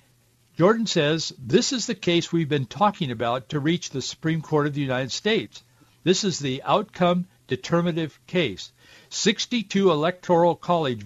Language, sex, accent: English, male, American